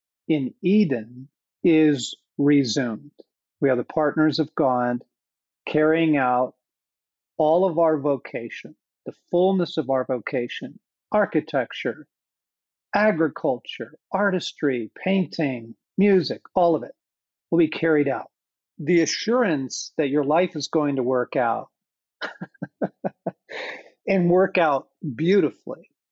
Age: 50-69